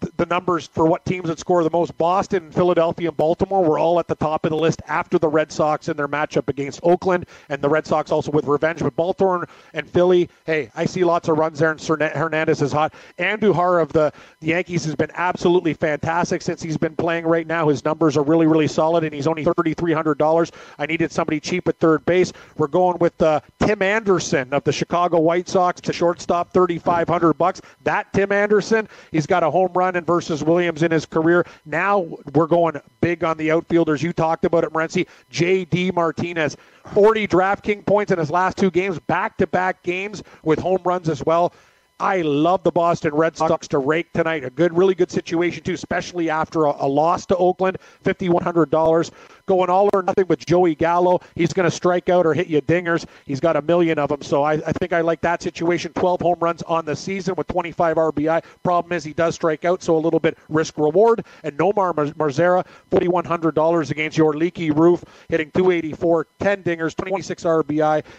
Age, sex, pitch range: 40-59, male, 160-180 Hz